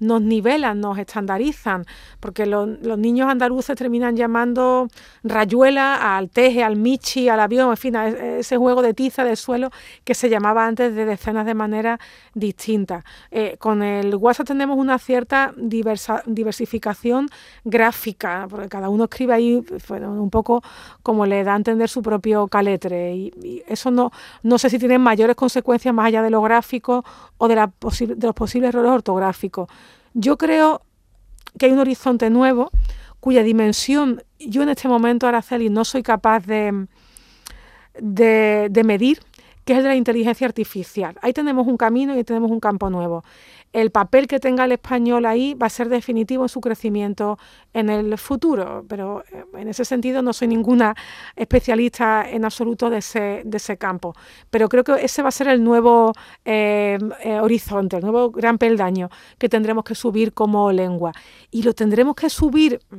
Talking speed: 170 wpm